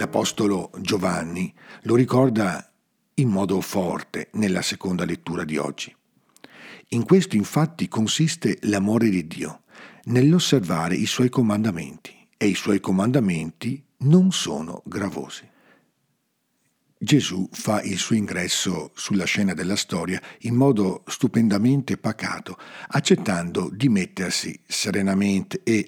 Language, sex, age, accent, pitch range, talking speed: Italian, male, 50-69, native, 100-140 Hz, 110 wpm